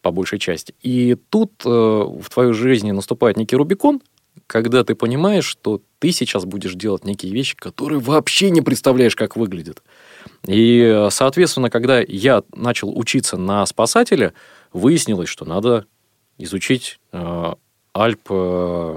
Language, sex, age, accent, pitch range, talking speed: Russian, male, 20-39, native, 105-130 Hz, 135 wpm